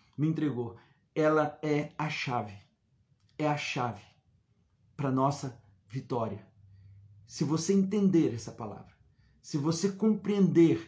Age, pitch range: 50-69, 115-150 Hz